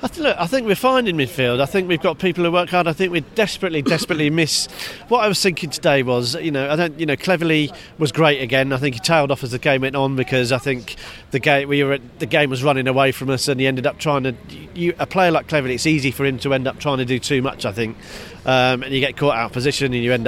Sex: male